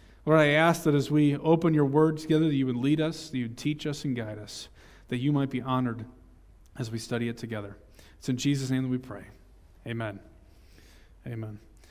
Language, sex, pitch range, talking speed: English, male, 140-170 Hz, 210 wpm